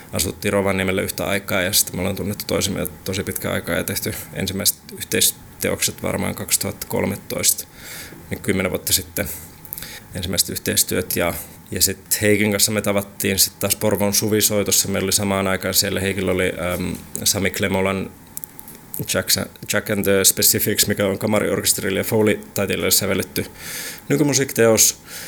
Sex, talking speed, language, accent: male, 140 wpm, Finnish, native